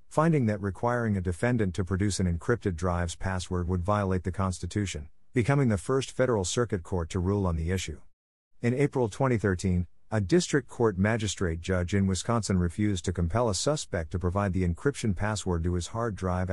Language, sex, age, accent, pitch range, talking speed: English, male, 50-69, American, 90-115 Hz, 180 wpm